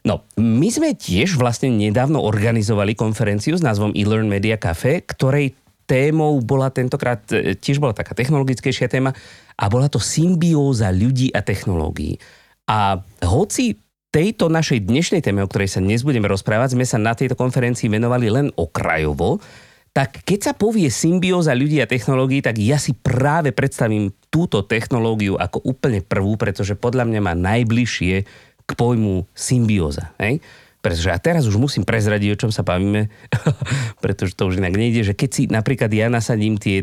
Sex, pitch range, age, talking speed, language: male, 95-130 Hz, 30-49, 160 wpm, Slovak